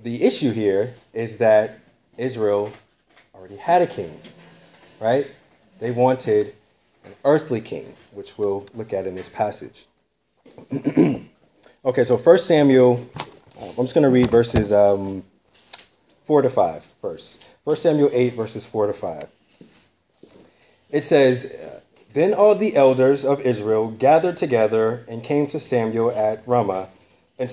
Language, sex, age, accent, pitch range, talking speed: English, male, 30-49, American, 110-145 Hz, 135 wpm